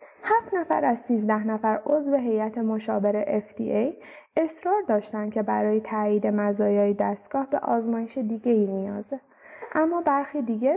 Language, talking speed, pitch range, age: Persian, 135 wpm, 210-260 Hz, 20-39